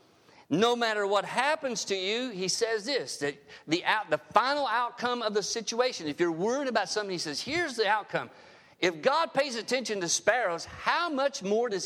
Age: 50-69